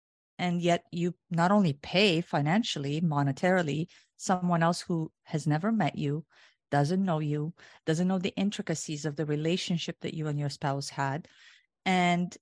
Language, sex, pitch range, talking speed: English, female, 150-180 Hz, 155 wpm